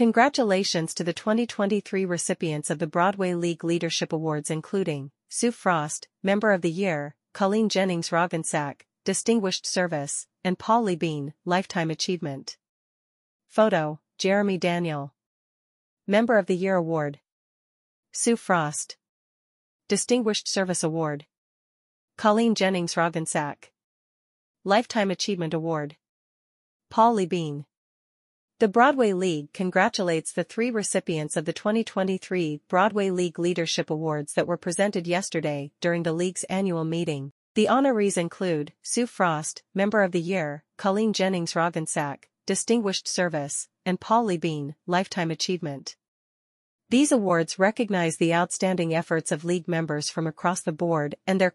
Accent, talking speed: American, 125 wpm